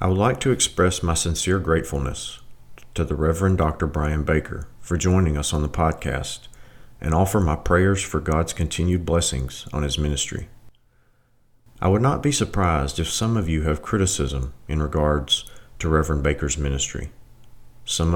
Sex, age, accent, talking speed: male, 40-59, American, 160 wpm